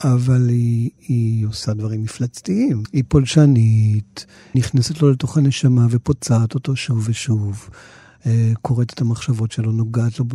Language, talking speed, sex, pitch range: Hebrew, 130 wpm, male, 115-135 Hz